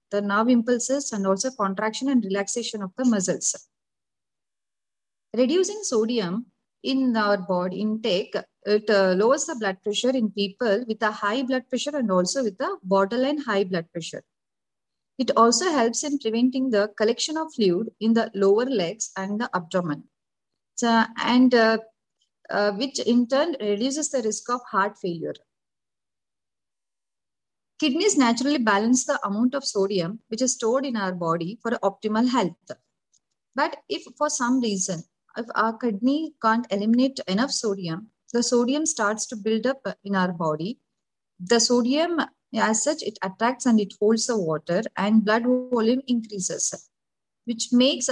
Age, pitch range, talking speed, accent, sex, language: 30-49, 200-255 Hz, 150 wpm, Indian, female, English